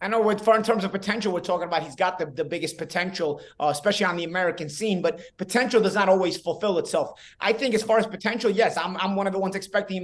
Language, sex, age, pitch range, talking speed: English, male, 30-49, 195-245 Hz, 265 wpm